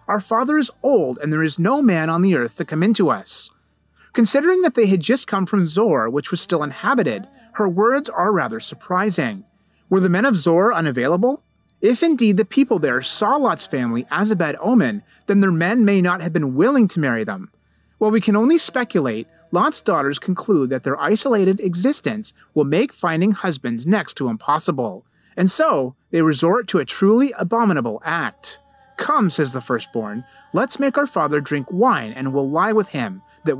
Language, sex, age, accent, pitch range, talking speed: English, male, 30-49, American, 160-235 Hz, 190 wpm